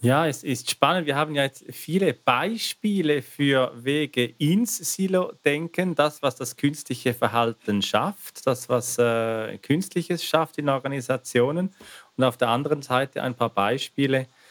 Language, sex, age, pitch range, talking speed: German, male, 40-59, 125-145 Hz, 145 wpm